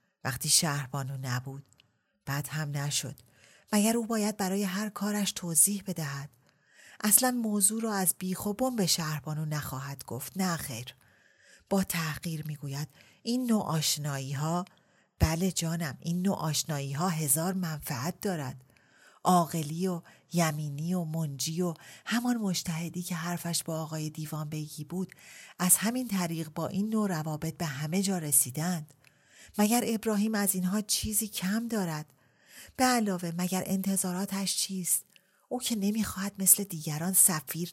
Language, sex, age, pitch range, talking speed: Persian, female, 40-59, 145-195 Hz, 135 wpm